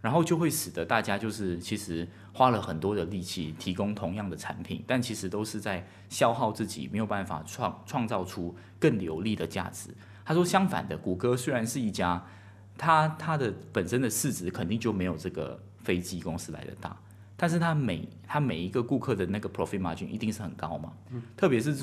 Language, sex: Chinese, male